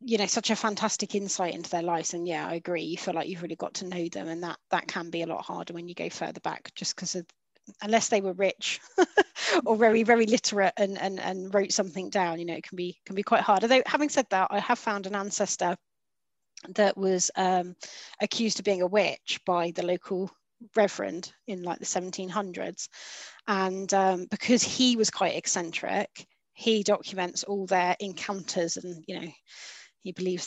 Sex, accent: female, British